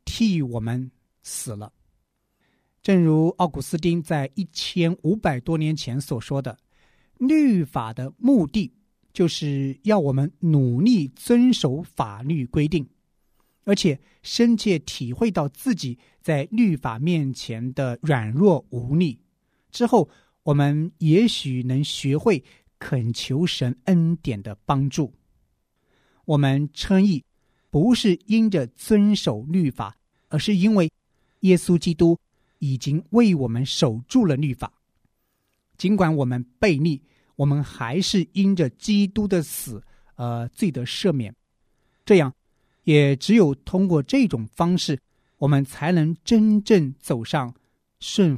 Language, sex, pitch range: Chinese, male, 130-190 Hz